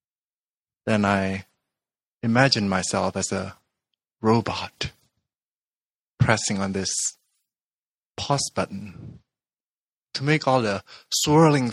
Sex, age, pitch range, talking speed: male, 20-39, 100-125 Hz, 85 wpm